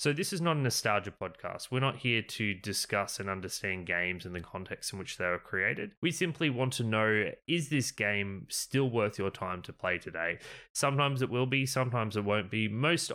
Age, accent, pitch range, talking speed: 20-39, Australian, 100-135 Hz, 215 wpm